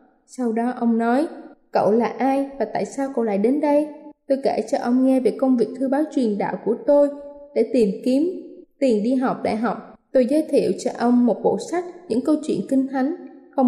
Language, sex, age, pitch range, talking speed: Vietnamese, female, 10-29, 230-285 Hz, 220 wpm